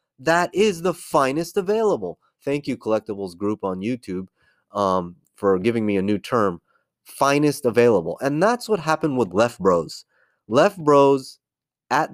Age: 30-49